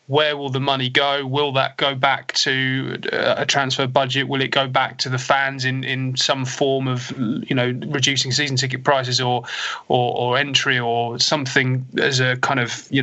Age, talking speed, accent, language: 20-39, 195 wpm, British, English